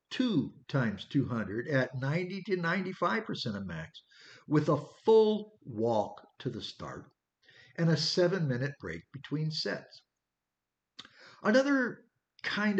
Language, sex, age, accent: English, male, 50-69, American